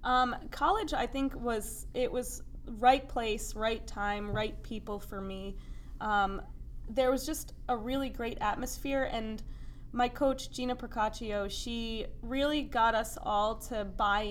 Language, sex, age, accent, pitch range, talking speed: English, female, 20-39, American, 205-255 Hz, 145 wpm